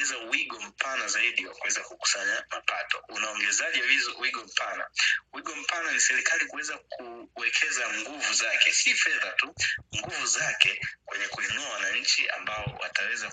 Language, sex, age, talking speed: Swahili, male, 20-39, 130 wpm